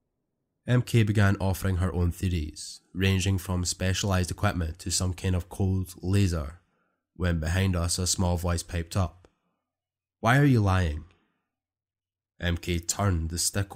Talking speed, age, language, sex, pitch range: 140 wpm, 20-39, English, male, 90-105 Hz